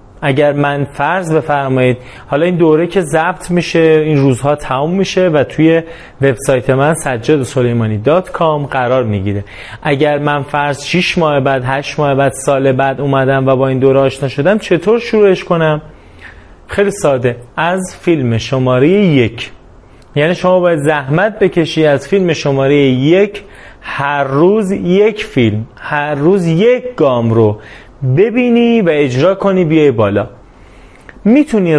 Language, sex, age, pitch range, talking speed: Persian, male, 30-49, 130-165 Hz, 140 wpm